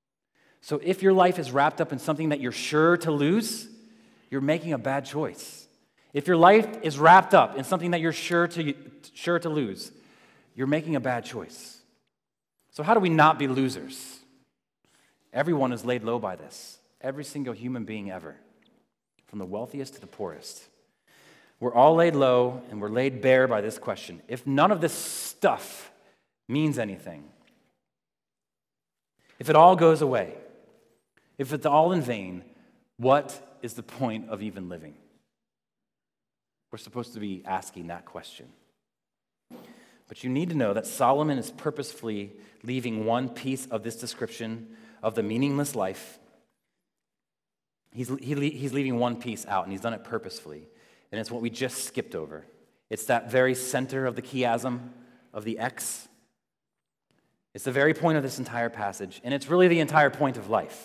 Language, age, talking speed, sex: English, 30-49, 165 wpm, male